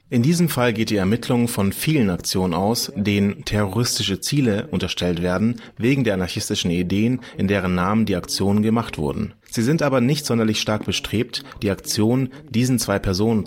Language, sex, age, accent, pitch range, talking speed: German, male, 30-49, German, 100-120 Hz, 170 wpm